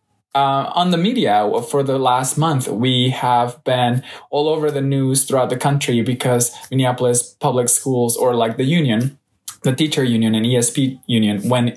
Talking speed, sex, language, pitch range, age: 170 wpm, male, English, 120-150 Hz, 20-39